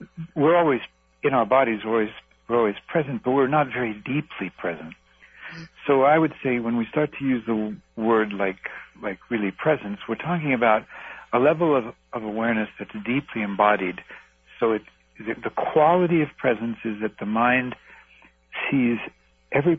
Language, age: English, 60-79